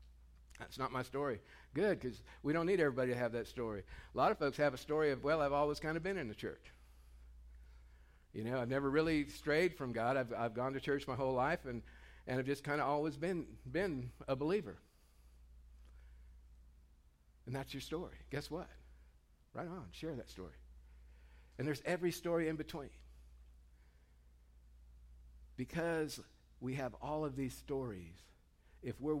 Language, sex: English, male